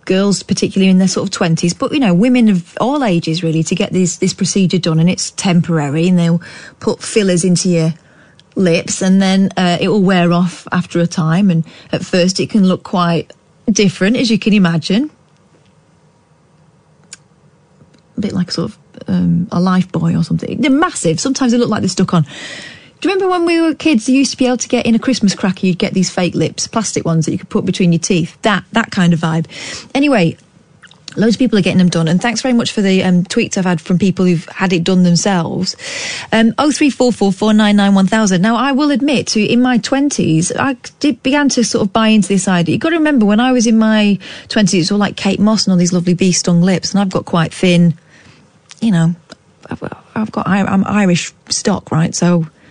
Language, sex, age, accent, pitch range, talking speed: English, female, 30-49, British, 175-220 Hz, 225 wpm